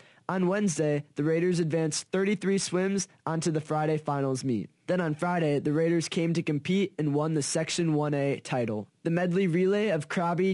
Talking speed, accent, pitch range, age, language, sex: 175 wpm, American, 150-175 Hz, 20-39, English, male